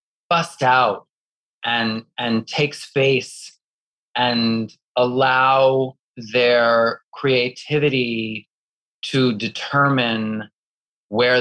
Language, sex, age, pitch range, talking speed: English, male, 30-49, 115-135 Hz, 70 wpm